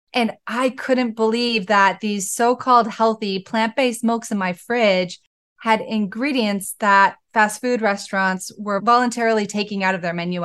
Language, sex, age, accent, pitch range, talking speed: English, female, 20-39, American, 185-225 Hz, 150 wpm